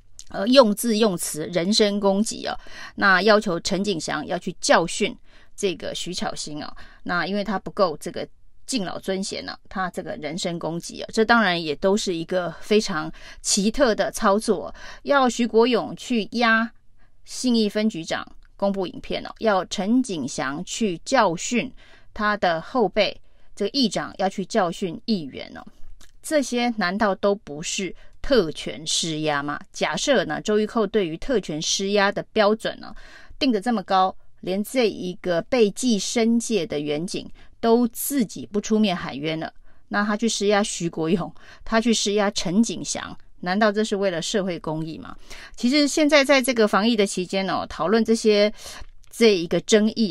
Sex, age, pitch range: female, 30-49, 180-225 Hz